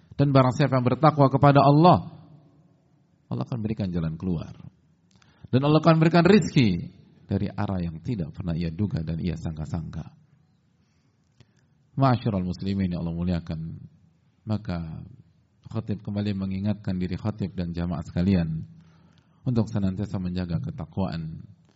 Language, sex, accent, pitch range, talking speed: Indonesian, male, native, 90-120 Hz, 125 wpm